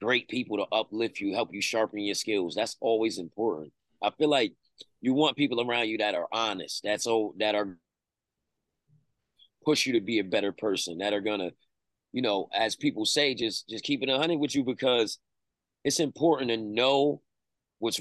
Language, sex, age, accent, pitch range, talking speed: English, male, 30-49, American, 110-145 Hz, 190 wpm